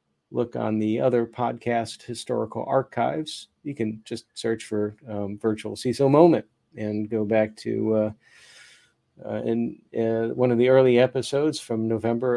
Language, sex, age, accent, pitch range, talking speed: English, male, 50-69, American, 110-135 Hz, 150 wpm